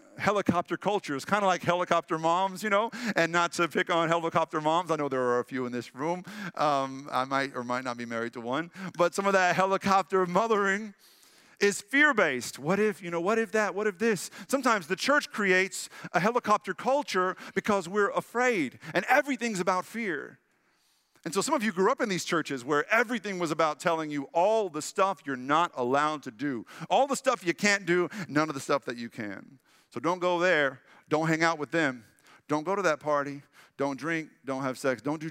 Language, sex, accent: English, male, American